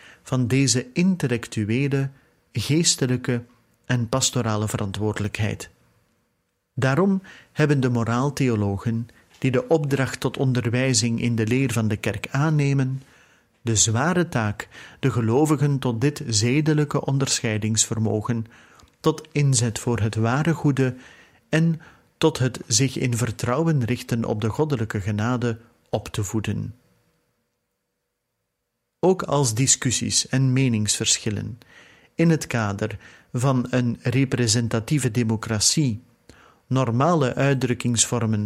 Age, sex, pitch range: 40-59, male, 115-135 Hz